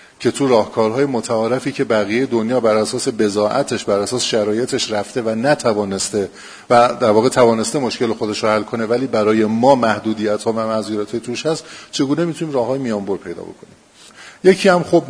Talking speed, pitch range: 175 wpm, 110-135 Hz